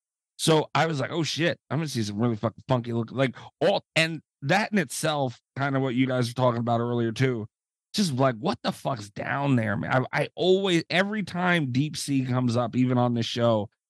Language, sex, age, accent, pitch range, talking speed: English, male, 30-49, American, 115-155 Hz, 220 wpm